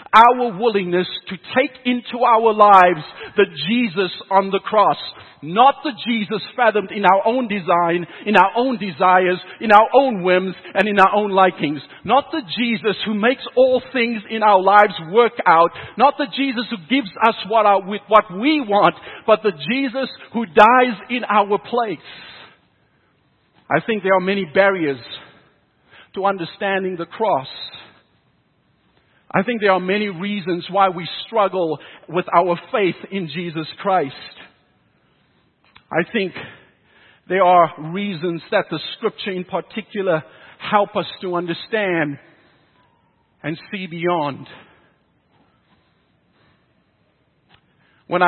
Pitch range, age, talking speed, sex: 175-220 Hz, 50-69, 130 wpm, male